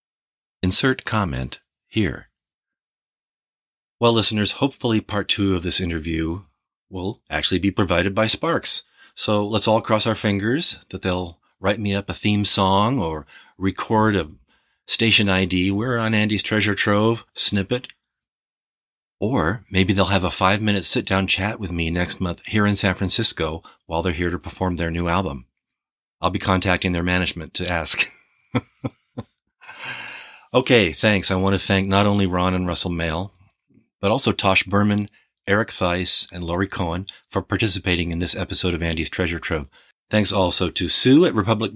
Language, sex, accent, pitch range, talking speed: English, male, American, 90-105 Hz, 155 wpm